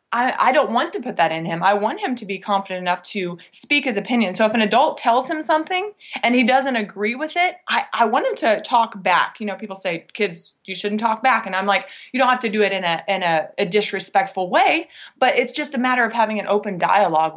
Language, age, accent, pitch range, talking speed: English, 20-39, American, 200-265 Hz, 260 wpm